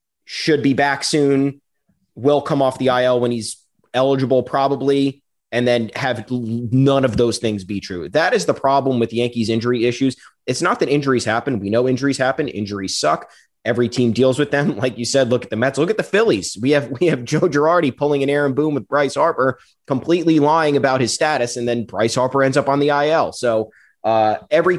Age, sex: 30-49, male